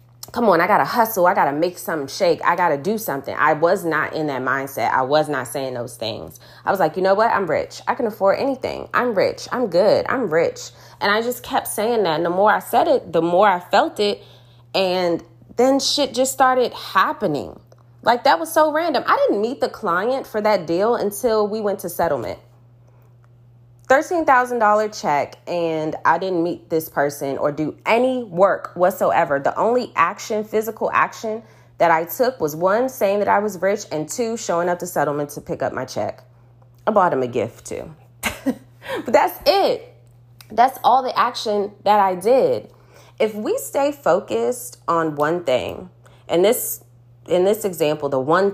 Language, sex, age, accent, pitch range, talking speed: English, female, 20-39, American, 135-215 Hz, 195 wpm